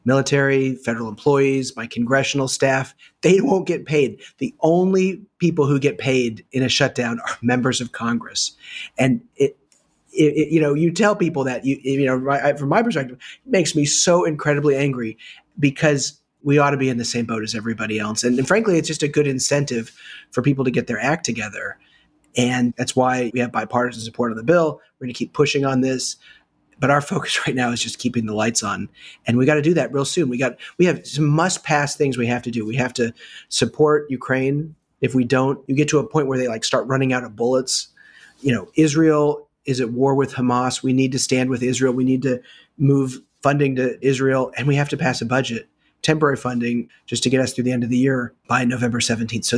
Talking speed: 225 wpm